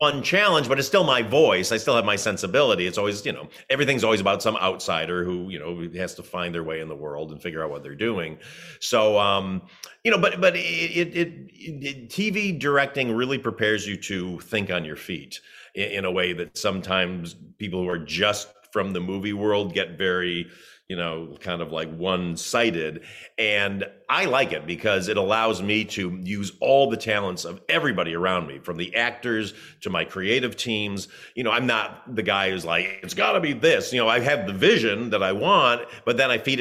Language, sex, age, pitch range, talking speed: English, male, 40-59, 90-125 Hz, 210 wpm